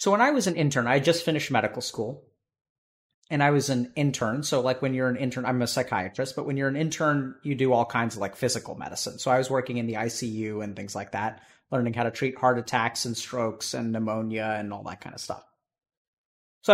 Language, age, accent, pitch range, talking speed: English, 30-49, American, 115-145 Hz, 235 wpm